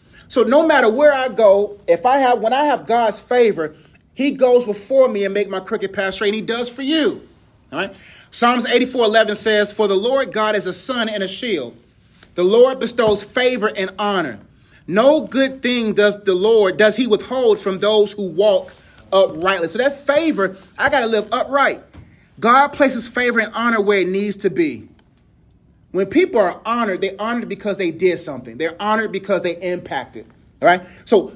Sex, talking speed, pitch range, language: male, 190 wpm, 200-260 Hz, English